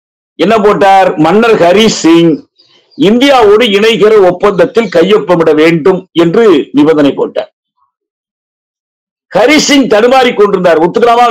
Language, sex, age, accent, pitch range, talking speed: Tamil, male, 50-69, native, 175-250 Hz, 85 wpm